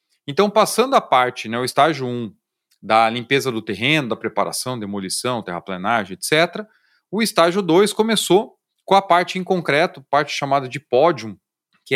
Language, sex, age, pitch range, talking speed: Portuguese, male, 30-49, 120-160 Hz, 160 wpm